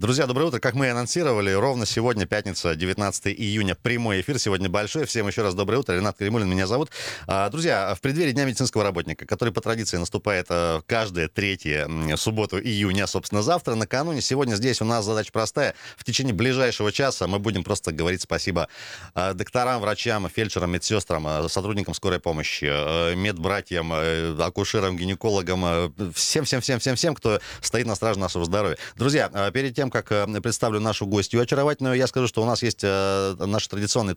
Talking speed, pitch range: 160 wpm, 95-120 Hz